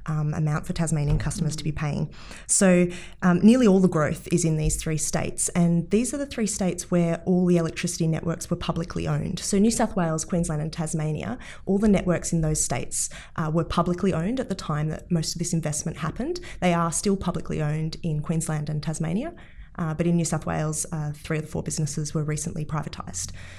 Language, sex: English, female